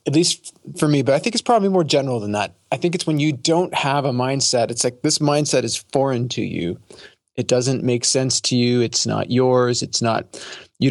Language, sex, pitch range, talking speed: English, male, 120-145 Hz, 230 wpm